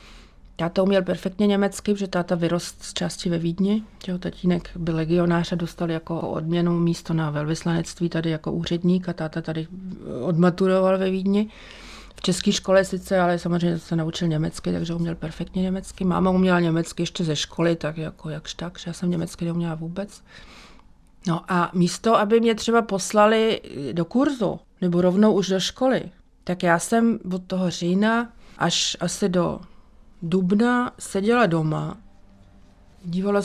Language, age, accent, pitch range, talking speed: Czech, 40-59, native, 165-195 Hz, 160 wpm